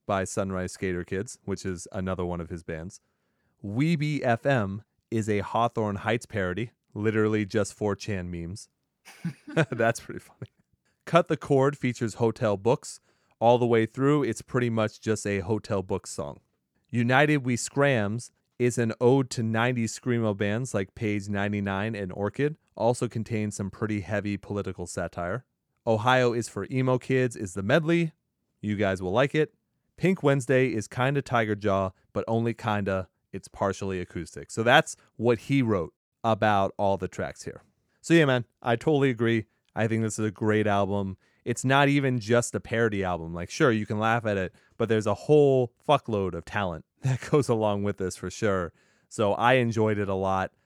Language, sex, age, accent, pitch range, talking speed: English, male, 30-49, American, 100-125 Hz, 175 wpm